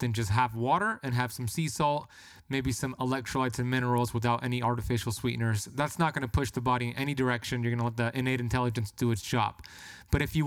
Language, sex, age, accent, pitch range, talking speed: English, male, 20-39, American, 120-145 Hz, 225 wpm